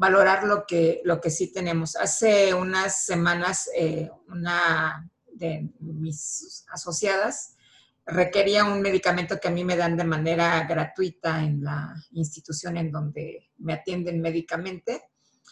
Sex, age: female, 40-59